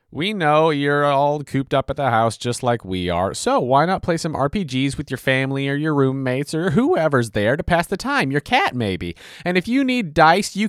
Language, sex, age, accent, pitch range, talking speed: English, male, 30-49, American, 110-160 Hz, 230 wpm